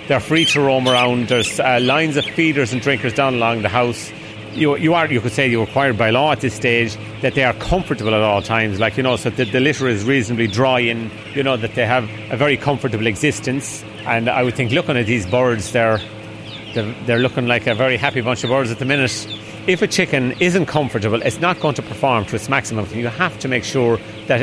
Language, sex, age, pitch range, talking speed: English, male, 30-49, 115-140 Hz, 240 wpm